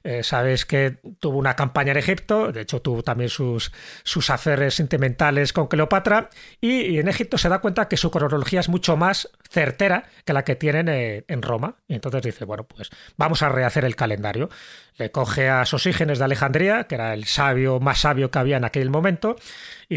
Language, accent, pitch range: Spanish, Spanish, 130-175 Hz